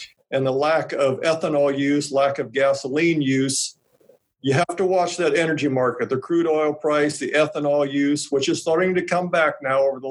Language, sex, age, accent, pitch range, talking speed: English, male, 50-69, American, 140-165 Hz, 195 wpm